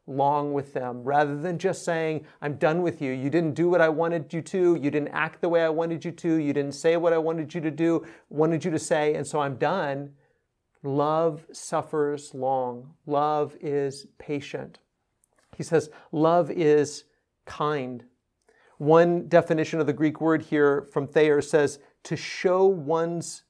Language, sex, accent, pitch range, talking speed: English, male, American, 150-190 Hz, 175 wpm